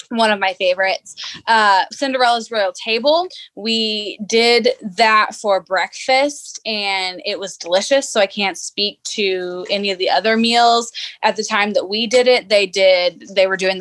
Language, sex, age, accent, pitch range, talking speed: English, female, 20-39, American, 190-235 Hz, 170 wpm